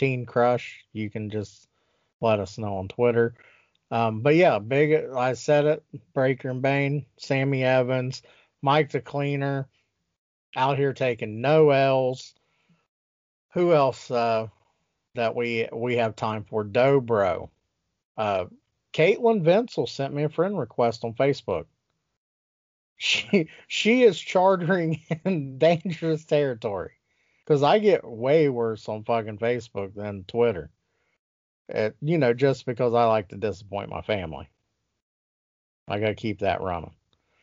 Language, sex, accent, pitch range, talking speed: English, male, American, 110-145 Hz, 135 wpm